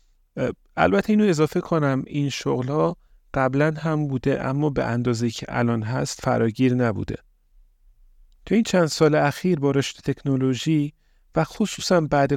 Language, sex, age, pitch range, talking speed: Persian, male, 40-59, 125-155 Hz, 140 wpm